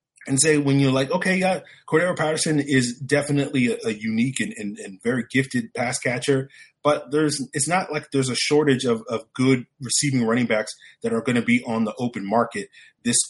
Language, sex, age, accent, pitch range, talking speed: English, male, 30-49, American, 115-145 Hz, 205 wpm